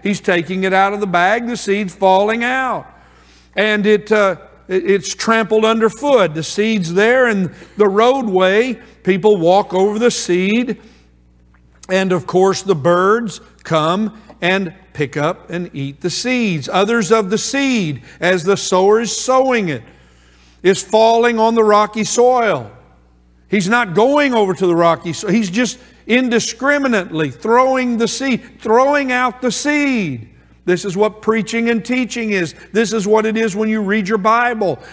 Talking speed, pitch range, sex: 160 wpm, 185-235 Hz, male